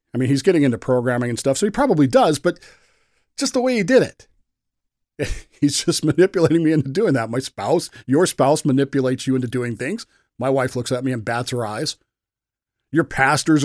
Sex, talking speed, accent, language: male, 200 wpm, American, English